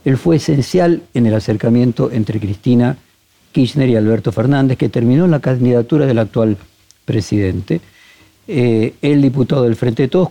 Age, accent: 50-69, Argentinian